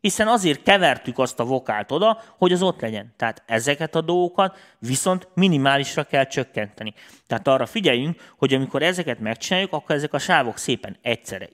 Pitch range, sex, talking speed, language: 110-160 Hz, male, 165 wpm, Hungarian